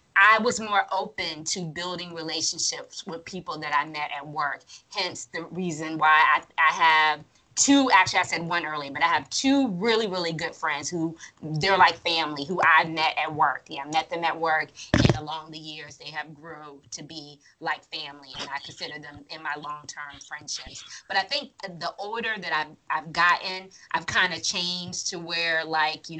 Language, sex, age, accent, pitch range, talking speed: English, female, 20-39, American, 145-175 Hz, 195 wpm